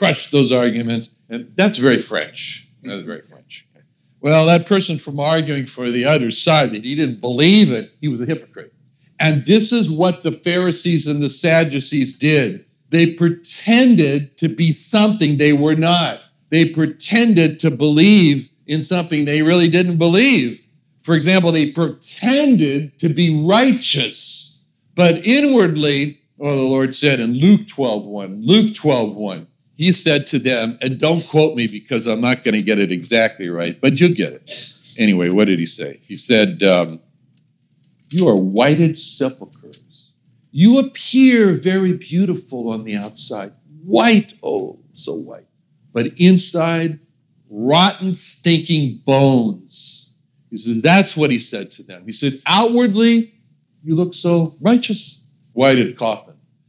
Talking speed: 150 wpm